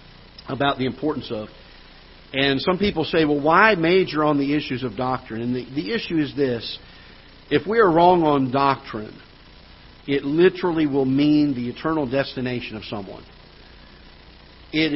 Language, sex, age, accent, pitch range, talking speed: English, male, 50-69, American, 115-145 Hz, 155 wpm